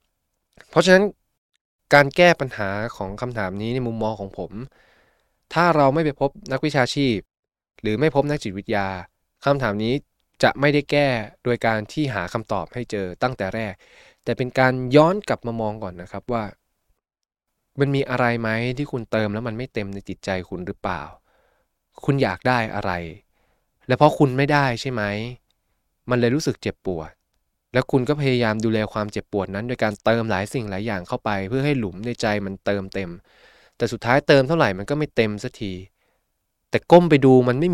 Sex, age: male, 20-39